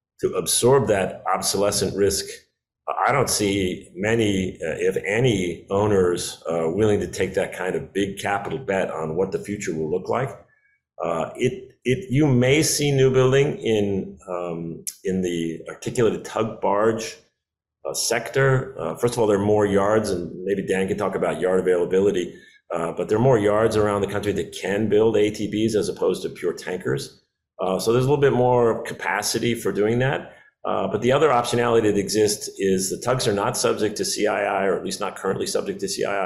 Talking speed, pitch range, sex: 190 wpm, 95-115 Hz, male